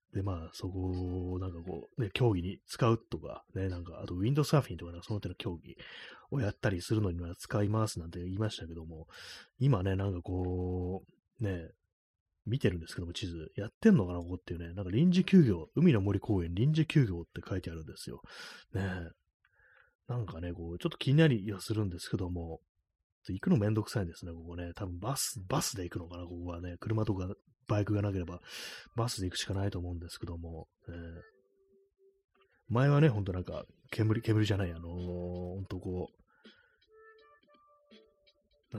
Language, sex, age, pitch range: Japanese, male, 30-49, 90-125 Hz